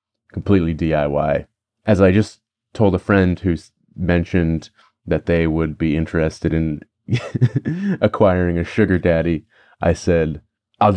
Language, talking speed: English, 125 wpm